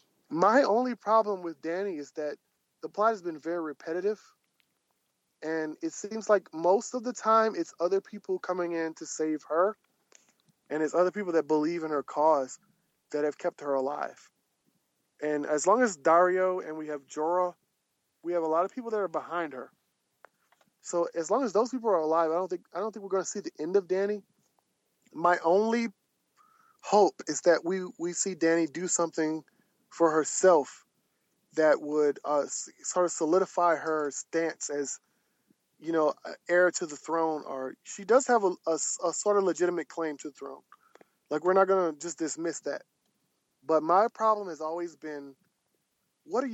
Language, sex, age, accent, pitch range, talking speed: English, male, 20-39, American, 160-200 Hz, 180 wpm